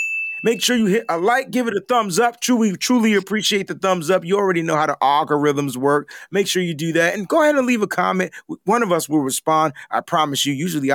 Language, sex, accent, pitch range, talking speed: English, male, American, 155-220 Hz, 245 wpm